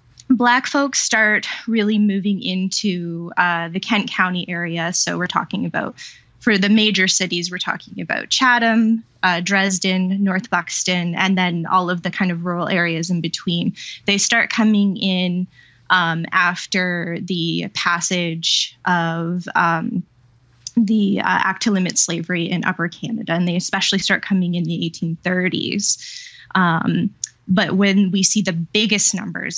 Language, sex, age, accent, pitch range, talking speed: English, female, 20-39, American, 175-195 Hz, 145 wpm